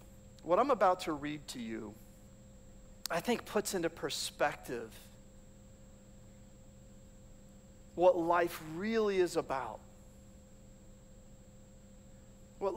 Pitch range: 155-215 Hz